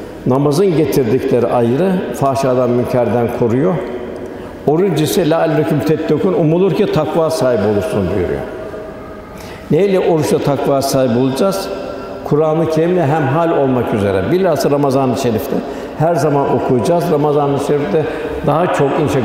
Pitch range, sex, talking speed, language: 135-165 Hz, male, 120 wpm, Turkish